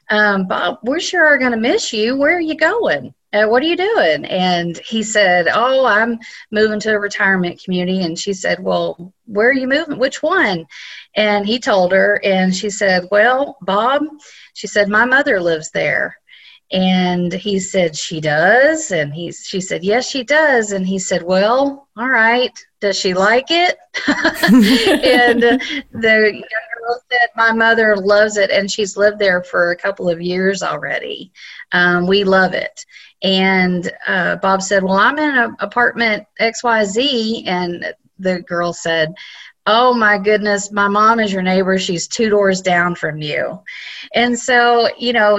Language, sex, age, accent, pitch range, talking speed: English, female, 40-59, American, 185-240 Hz, 170 wpm